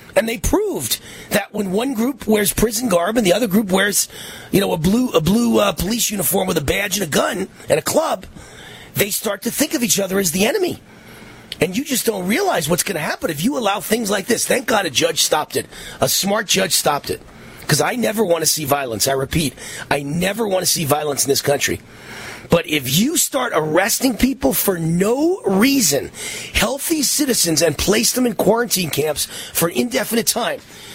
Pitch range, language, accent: 155-230 Hz, English, American